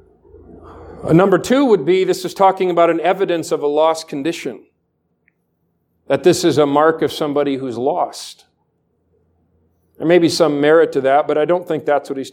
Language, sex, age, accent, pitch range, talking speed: English, male, 50-69, American, 165-245 Hz, 180 wpm